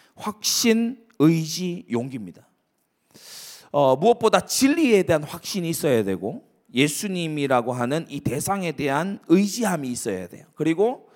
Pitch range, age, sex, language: 150-220 Hz, 30-49, male, Korean